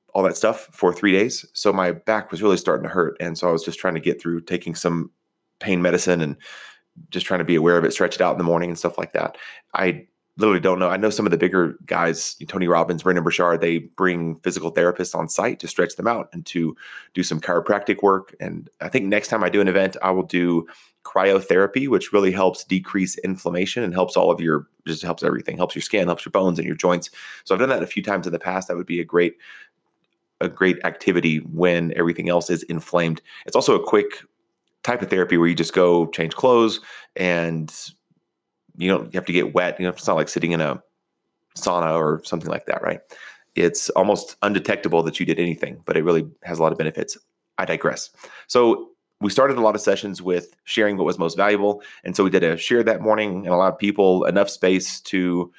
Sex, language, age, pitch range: male, English, 30-49, 85-100 Hz